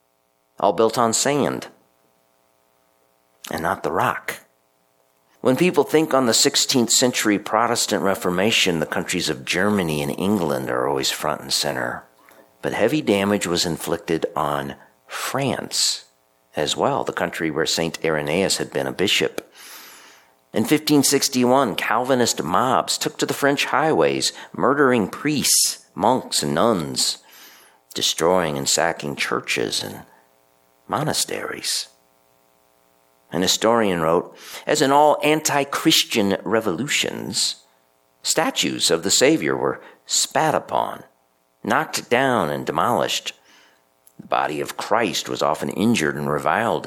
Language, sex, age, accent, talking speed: English, male, 50-69, American, 120 wpm